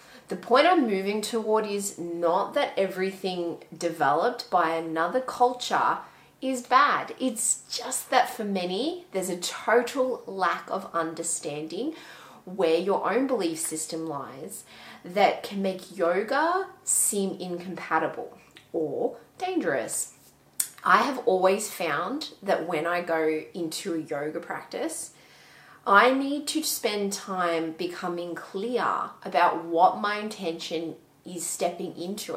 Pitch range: 165-220 Hz